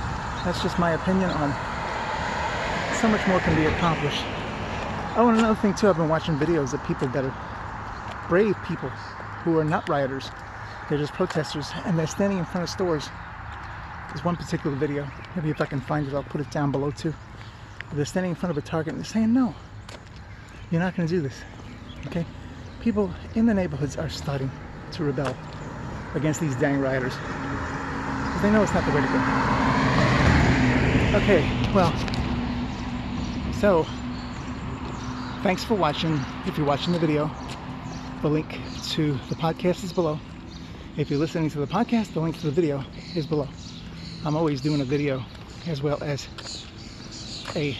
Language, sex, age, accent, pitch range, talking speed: English, male, 30-49, American, 115-165 Hz, 165 wpm